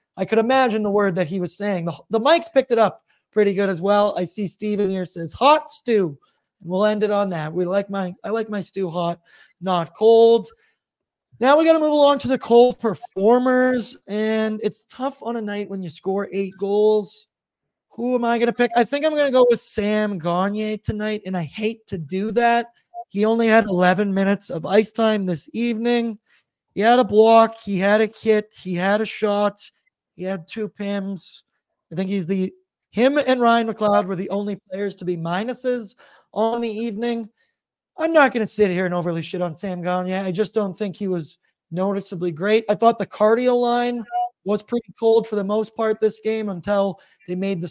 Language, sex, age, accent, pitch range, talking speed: English, male, 30-49, American, 190-230 Hz, 210 wpm